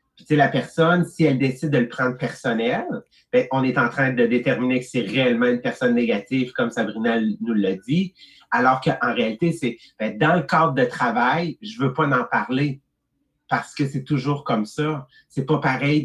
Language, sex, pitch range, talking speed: English, male, 125-160 Hz, 205 wpm